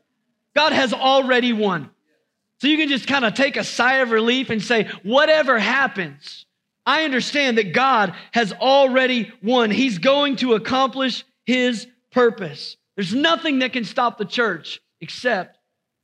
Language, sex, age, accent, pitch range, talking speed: English, male, 40-59, American, 170-235 Hz, 150 wpm